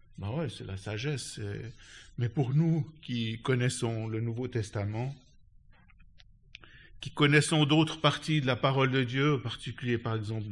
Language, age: French, 50-69